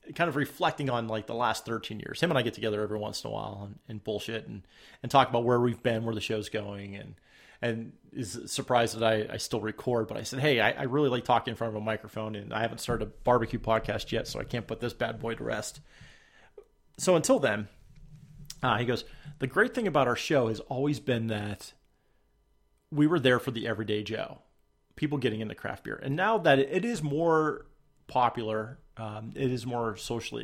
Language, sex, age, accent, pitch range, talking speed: English, male, 30-49, American, 110-140 Hz, 225 wpm